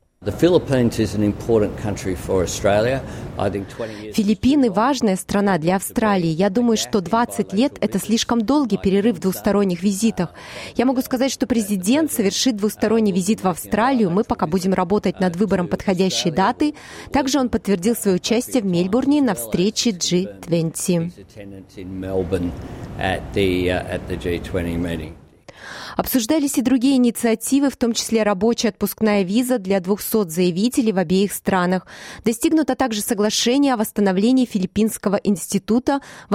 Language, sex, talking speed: Russian, female, 115 wpm